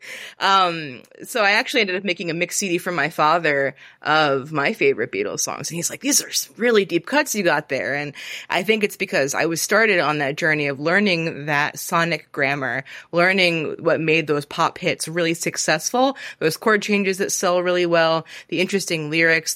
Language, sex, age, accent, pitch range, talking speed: English, female, 20-39, American, 150-190 Hz, 195 wpm